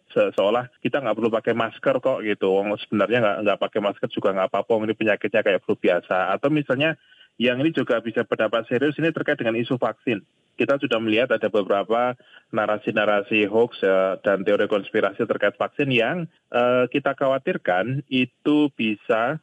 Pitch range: 95-120 Hz